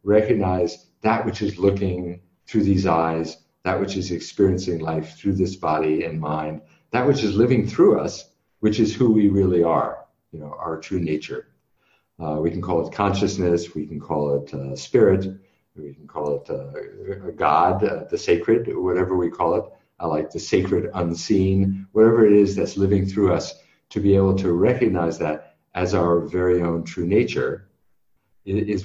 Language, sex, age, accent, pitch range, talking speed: English, male, 50-69, American, 85-110 Hz, 175 wpm